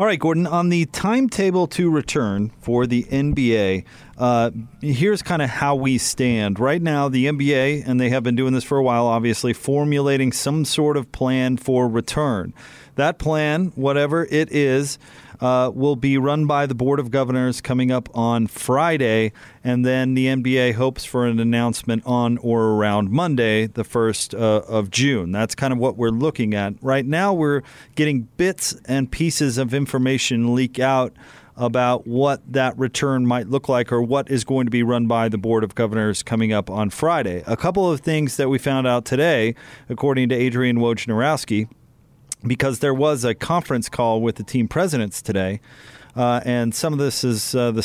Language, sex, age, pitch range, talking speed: English, male, 30-49, 120-145 Hz, 185 wpm